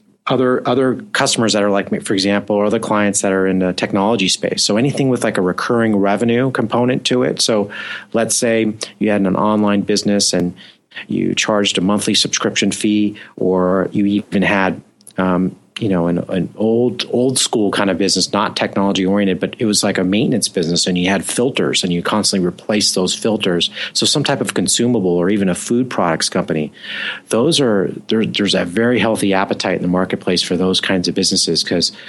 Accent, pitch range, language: American, 95-115 Hz, English